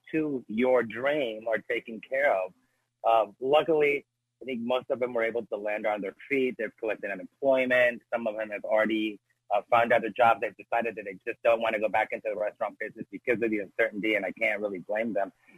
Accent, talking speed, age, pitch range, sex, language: American, 225 wpm, 30-49, 110-125 Hz, male, English